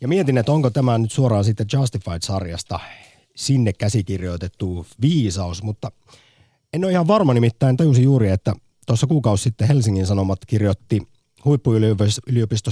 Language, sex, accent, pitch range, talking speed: Finnish, male, native, 100-135 Hz, 130 wpm